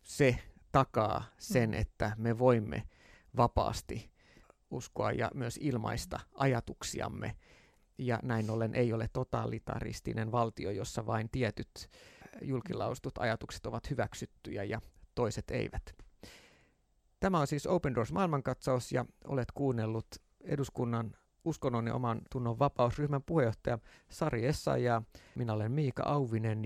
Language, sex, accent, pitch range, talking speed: Finnish, male, native, 110-140 Hz, 115 wpm